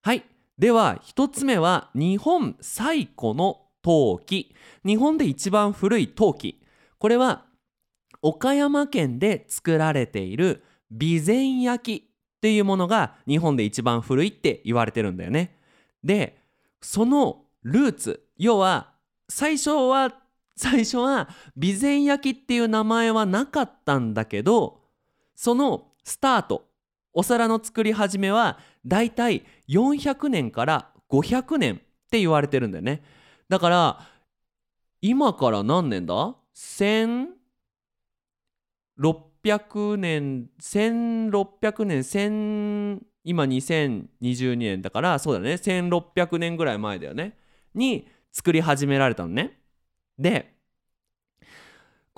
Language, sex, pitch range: Japanese, male, 145-235 Hz